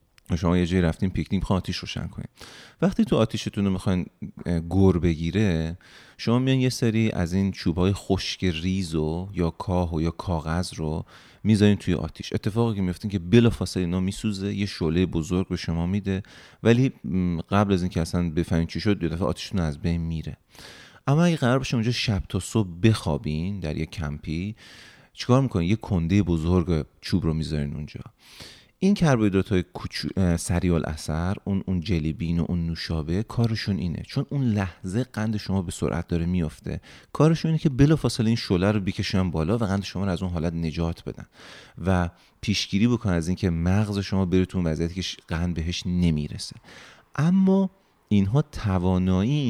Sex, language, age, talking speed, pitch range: male, Persian, 30-49, 165 wpm, 85-105 Hz